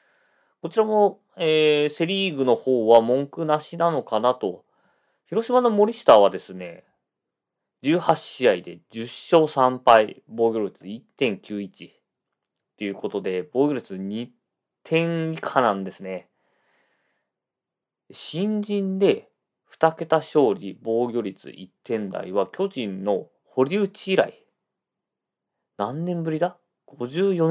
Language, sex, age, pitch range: Japanese, male, 30-49, 100-165 Hz